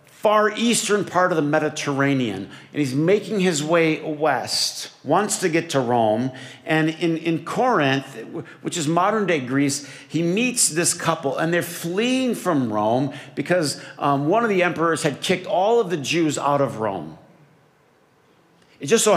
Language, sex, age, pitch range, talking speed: English, male, 50-69, 130-170 Hz, 165 wpm